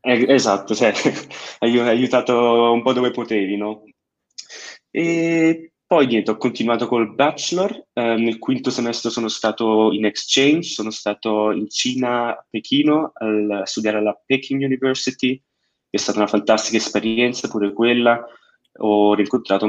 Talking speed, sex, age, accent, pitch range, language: 140 wpm, male, 20-39, native, 105-125 Hz, Italian